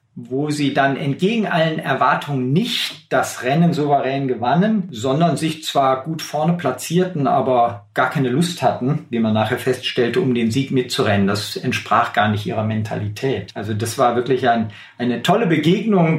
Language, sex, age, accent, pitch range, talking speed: German, male, 50-69, German, 135-190 Hz, 160 wpm